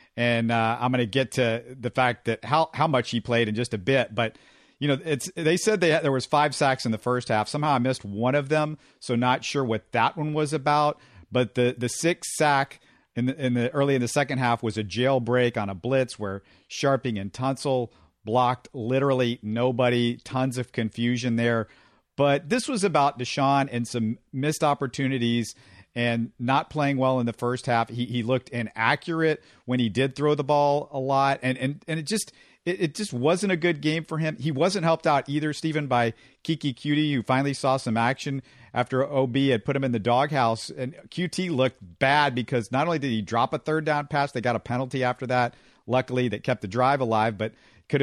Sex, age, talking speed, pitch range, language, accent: male, 50-69, 215 wpm, 120-150 Hz, English, American